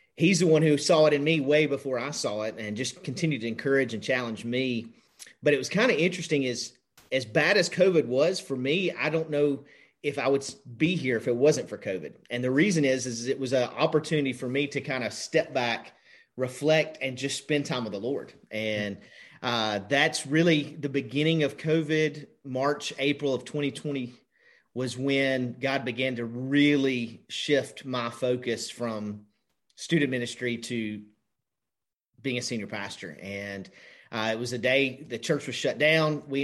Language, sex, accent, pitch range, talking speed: English, male, American, 120-145 Hz, 185 wpm